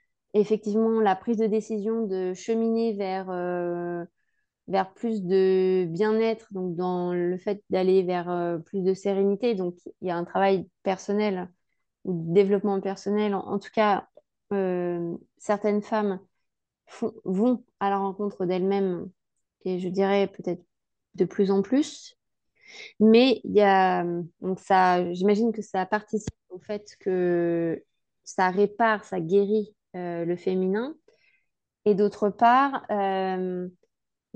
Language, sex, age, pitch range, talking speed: French, female, 20-39, 185-215 Hz, 135 wpm